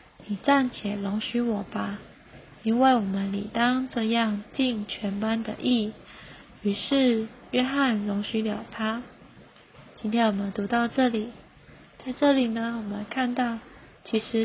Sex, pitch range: female, 210-255 Hz